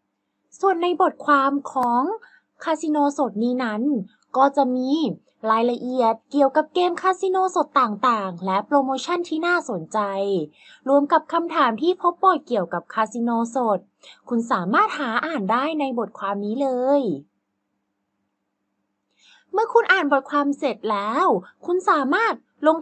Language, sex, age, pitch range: Thai, female, 20-39, 235-325 Hz